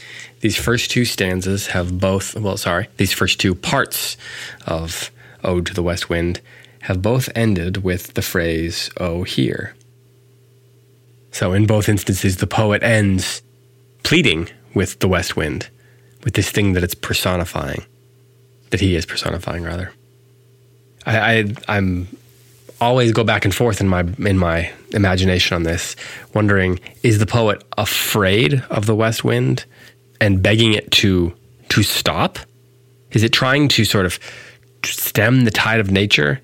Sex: male